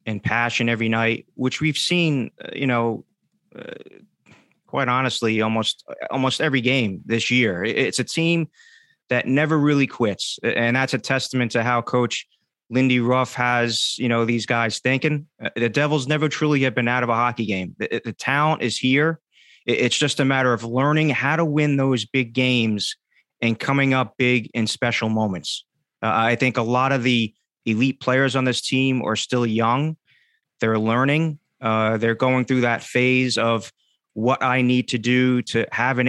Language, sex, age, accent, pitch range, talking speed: English, male, 30-49, American, 120-140 Hz, 180 wpm